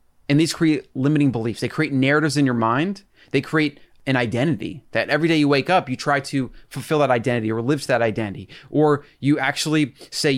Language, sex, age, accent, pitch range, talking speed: English, male, 30-49, American, 120-145 Hz, 210 wpm